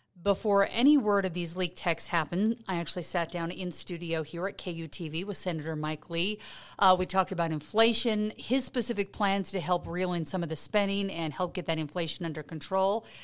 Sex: female